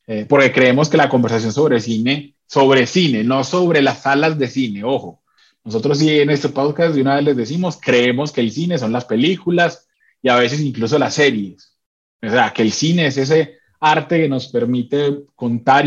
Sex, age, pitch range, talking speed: male, 30-49, 115-145 Hz, 195 wpm